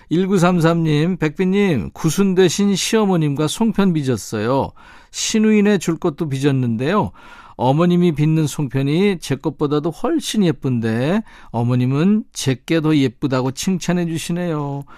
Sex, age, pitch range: male, 50-69, 120-175 Hz